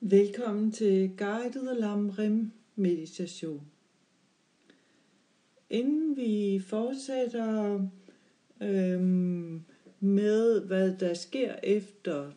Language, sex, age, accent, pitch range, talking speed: Danish, female, 60-79, native, 190-230 Hz, 75 wpm